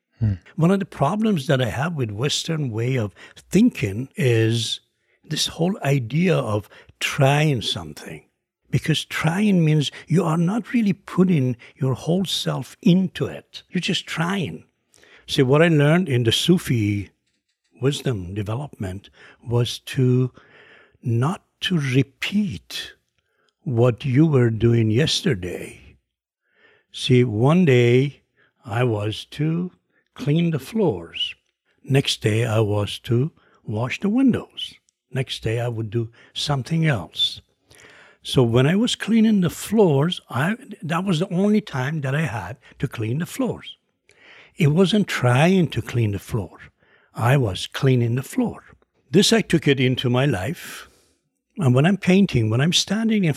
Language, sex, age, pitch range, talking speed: English, male, 60-79, 120-175 Hz, 140 wpm